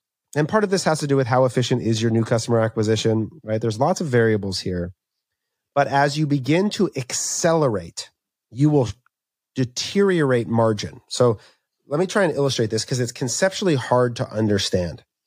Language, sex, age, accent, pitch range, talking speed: English, male, 30-49, American, 115-155 Hz, 175 wpm